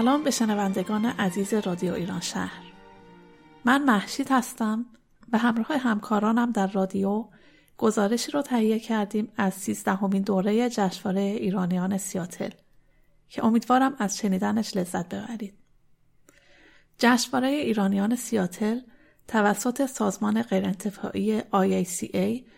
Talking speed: 105 wpm